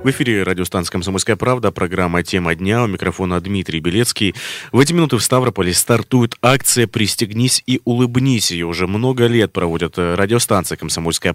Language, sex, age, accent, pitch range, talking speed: Russian, male, 20-39, native, 90-120 Hz, 155 wpm